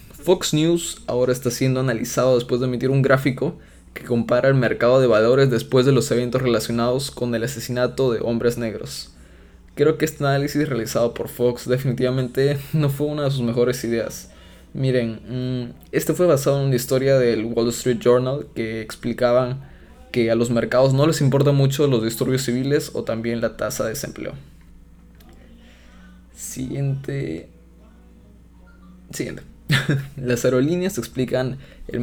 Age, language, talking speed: 20-39, Spanish, 150 wpm